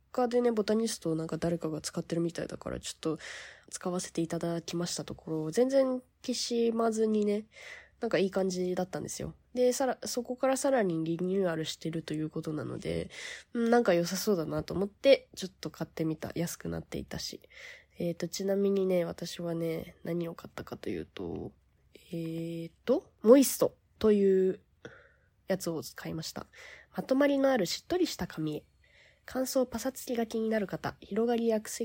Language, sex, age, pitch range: Japanese, female, 20-39, 165-235 Hz